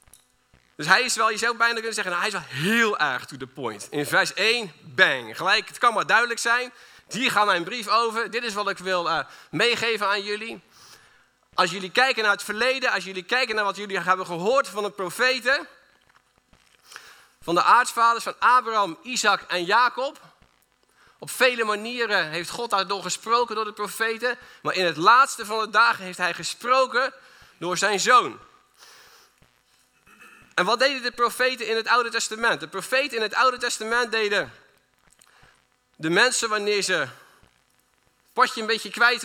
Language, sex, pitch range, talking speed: Dutch, male, 200-245 Hz, 175 wpm